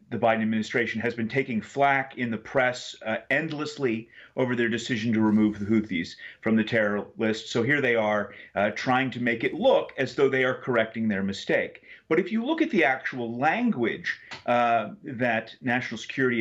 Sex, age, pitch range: male, 30-49, 110-140 Hz